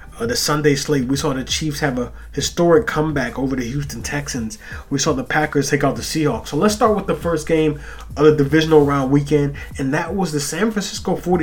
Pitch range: 130-155 Hz